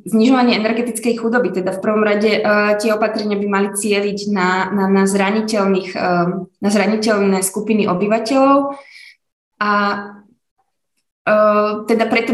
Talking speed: 95 wpm